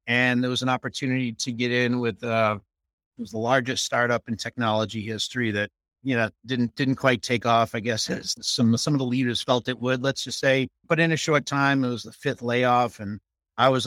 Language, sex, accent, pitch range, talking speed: English, male, American, 115-135 Hz, 225 wpm